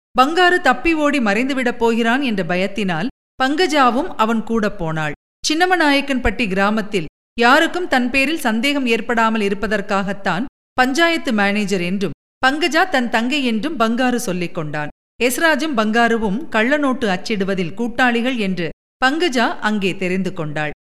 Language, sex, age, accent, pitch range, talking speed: Tamil, female, 50-69, native, 200-280 Hz, 110 wpm